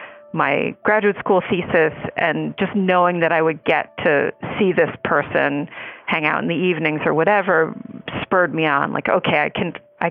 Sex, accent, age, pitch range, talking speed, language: female, American, 40-59, 160-200 Hz, 180 wpm, English